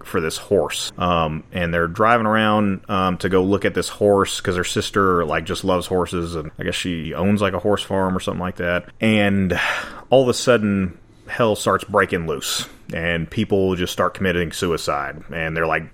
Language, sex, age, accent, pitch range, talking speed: English, male, 30-49, American, 85-105 Hz, 200 wpm